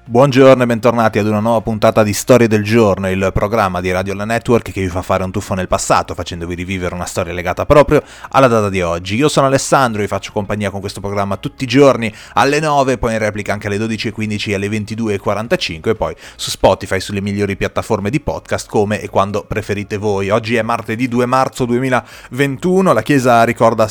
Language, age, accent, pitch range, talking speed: Italian, 30-49, native, 100-130 Hz, 205 wpm